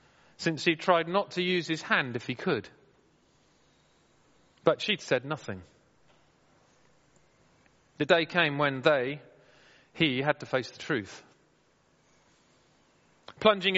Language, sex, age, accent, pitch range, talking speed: English, male, 40-59, British, 140-185 Hz, 120 wpm